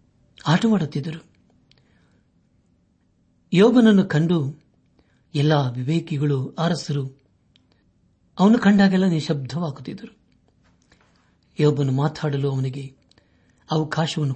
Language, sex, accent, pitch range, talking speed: Kannada, male, native, 135-165 Hz, 55 wpm